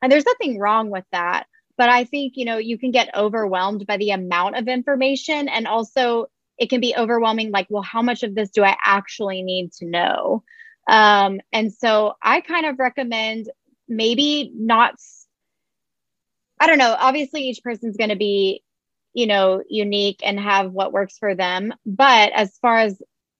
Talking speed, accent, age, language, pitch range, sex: 175 wpm, American, 20-39, English, 205-255 Hz, female